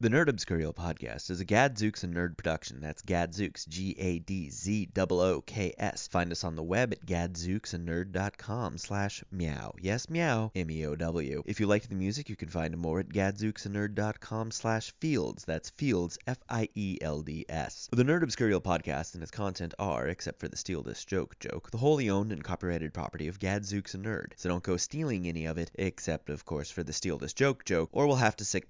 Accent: American